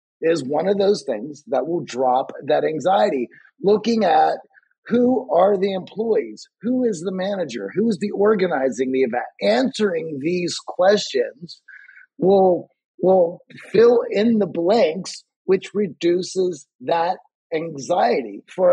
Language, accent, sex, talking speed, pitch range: English, American, male, 130 wpm, 155-215 Hz